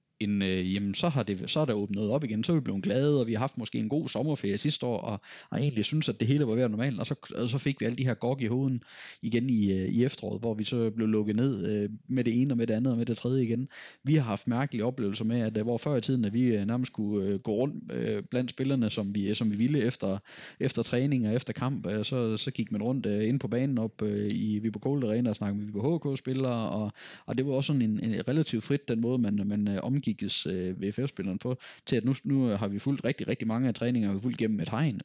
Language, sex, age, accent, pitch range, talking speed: Danish, male, 20-39, native, 105-130 Hz, 260 wpm